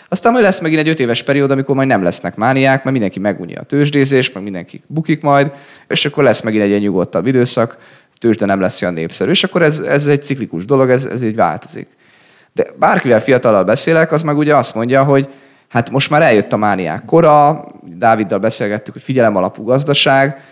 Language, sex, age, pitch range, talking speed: Hungarian, male, 20-39, 105-145 Hz, 200 wpm